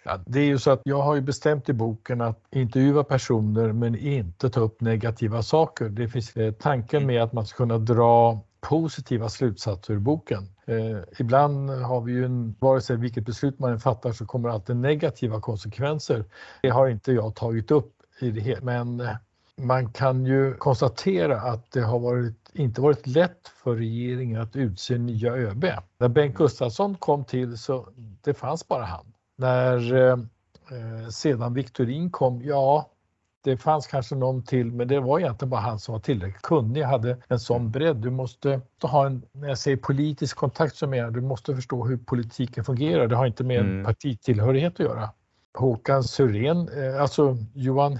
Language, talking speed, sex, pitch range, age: Swedish, 180 wpm, male, 115-140 Hz, 50-69